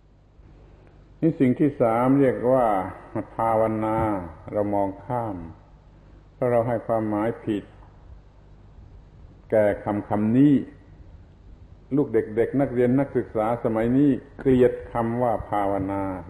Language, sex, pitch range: Thai, male, 105-130 Hz